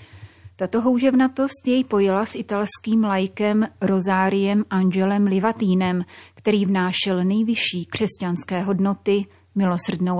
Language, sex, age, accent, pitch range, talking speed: Czech, female, 30-49, native, 185-205 Hz, 95 wpm